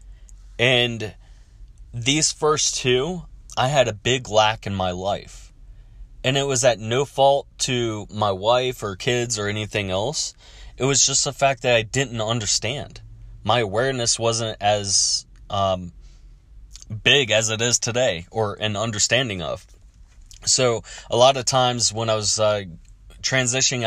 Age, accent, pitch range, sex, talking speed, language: 20-39, American, 95-120 Hz, male, 150 wpm, English